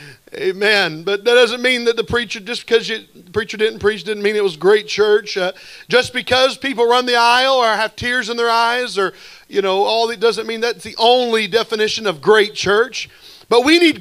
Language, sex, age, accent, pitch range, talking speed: English, male, 40-59, American, 205-250 Hz, 220 wpm